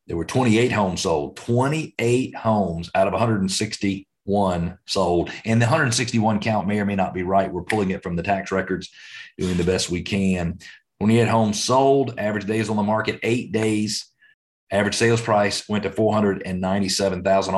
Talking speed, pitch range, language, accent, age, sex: 175 wpm, 95-110 Hz, English, American, 40-59, male